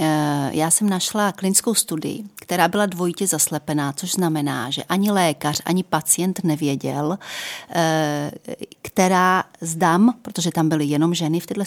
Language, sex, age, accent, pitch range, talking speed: Czech, female, 40-59, native, 155-195 Hz, 135 wpm